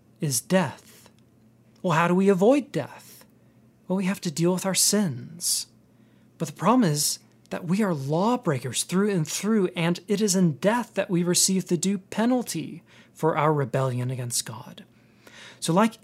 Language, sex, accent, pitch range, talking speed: English, male, American, 135-185 Hz, 170 wpm